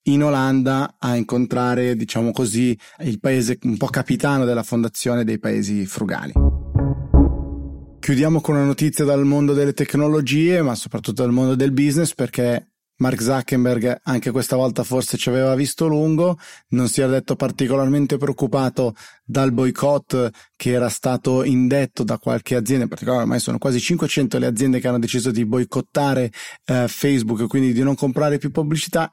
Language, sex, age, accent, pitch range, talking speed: Italian, male, 30-49, native, 120-140 Hz, 160 wpm